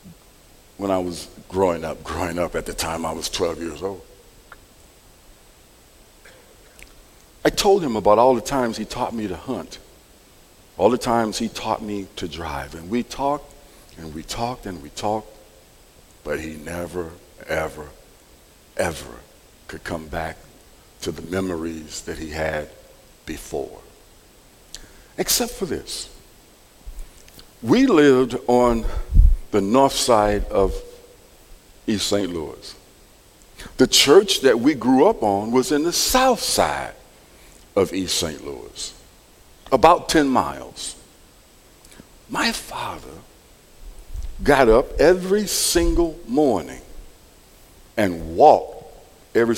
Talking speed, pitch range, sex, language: 120 wpm, 80-130 Hz, male, English